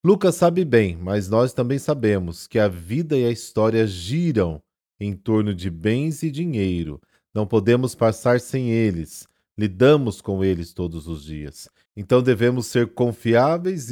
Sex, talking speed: male, 150 wpm